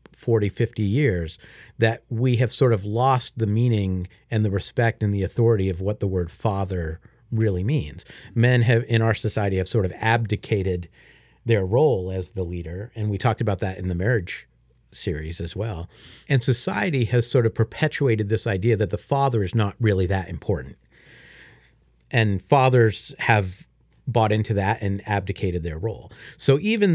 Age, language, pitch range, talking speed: 50-69, English, 95-120 Hz, 170 wpm